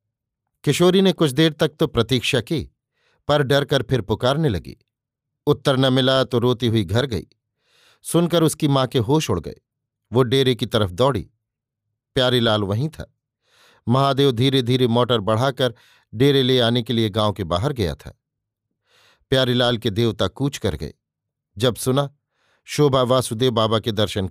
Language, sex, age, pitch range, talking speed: Hindi, male, 50-69, 115-140 Hz, 160 wpm